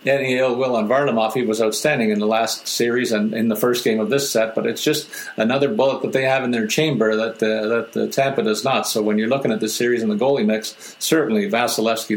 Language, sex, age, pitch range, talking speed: English, male, 50-69, 110-150 Hz, 250 wpm